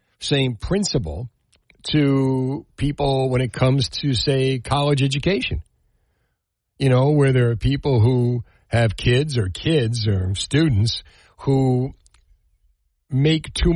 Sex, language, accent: male, English, American